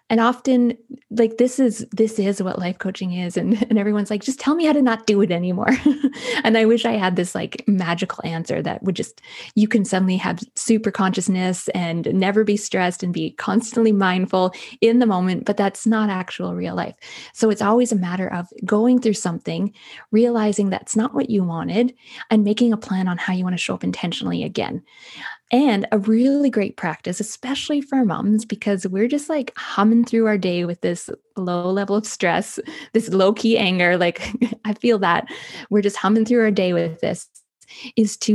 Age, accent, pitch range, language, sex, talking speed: 20-39, American, 190-235 Hz, English, female, 200 wpm